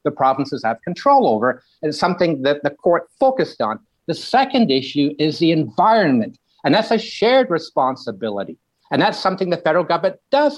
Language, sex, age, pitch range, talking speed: English, male, 60-79, 130-180 Hz, 170 wpm